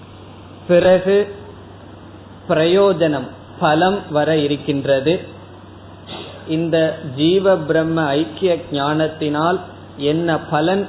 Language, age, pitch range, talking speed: Tamil, 20-39, 110-165 Hz, 60 wpm